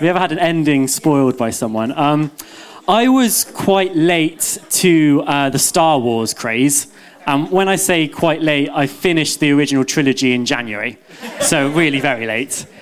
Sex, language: male, English